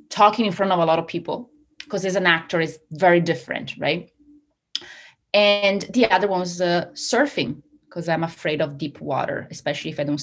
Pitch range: 155-220 Hz